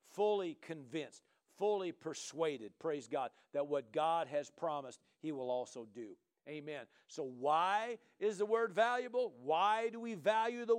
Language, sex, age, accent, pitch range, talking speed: English, male, 50-69, American, 195-260 Hz, 150 wpm